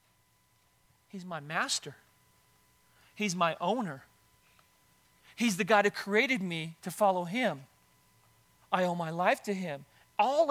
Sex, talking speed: male, 125 wpm